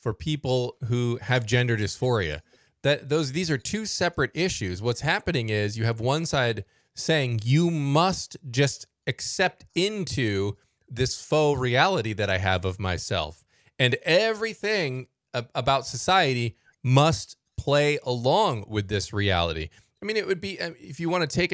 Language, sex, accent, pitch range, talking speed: English, male, American, 115-155 Hz, 150 wpm